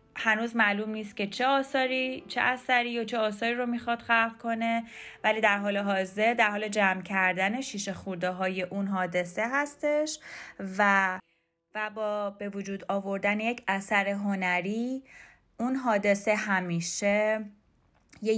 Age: 20-39